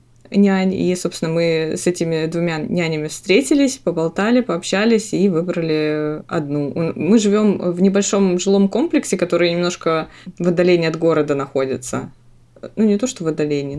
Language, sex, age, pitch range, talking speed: Russian, female, 20-39, 165-200 Hz, 145 wpm